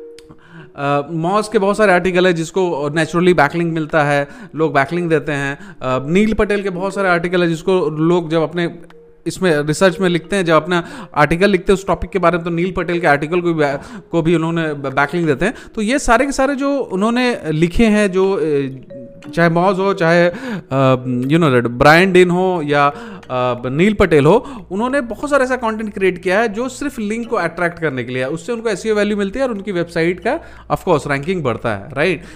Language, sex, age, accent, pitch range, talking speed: Hindi, male, 30-49, native, 155-215 Hz, 195 wpm